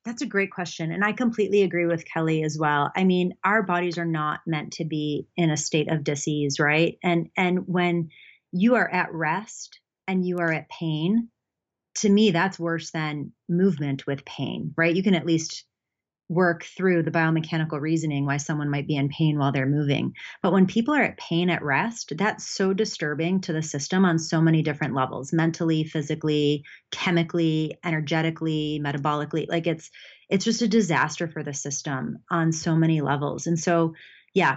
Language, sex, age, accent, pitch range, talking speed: English, female, 30-49, American, 155-185 Hz, 185 wpm